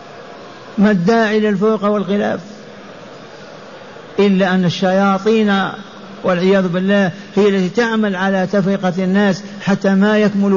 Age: 60-79